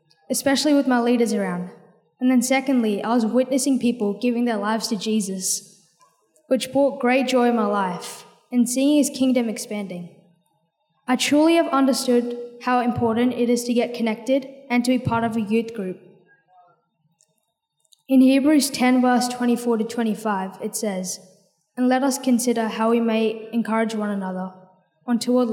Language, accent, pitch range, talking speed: English, Australian, 200-250 Hz, 160 wpm